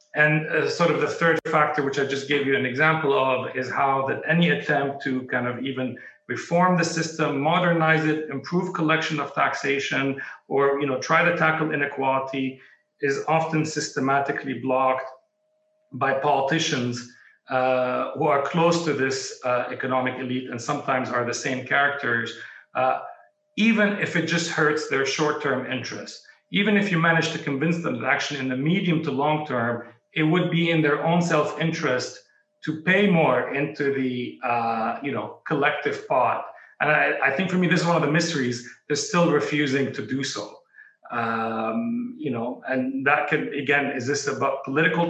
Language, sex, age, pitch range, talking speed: English, male, 40-59, 130-160 Hz, 170 wpm